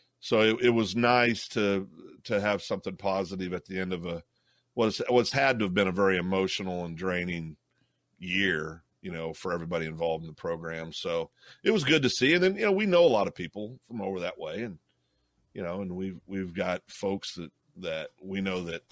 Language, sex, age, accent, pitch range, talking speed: English, male, 40-59, American, 90-115 Hz, 215 wpm